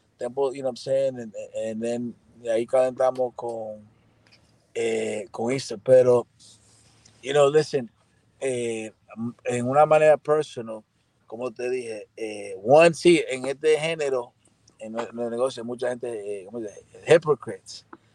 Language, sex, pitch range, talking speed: Spanish, male, 115-150 Hz, 140 wpm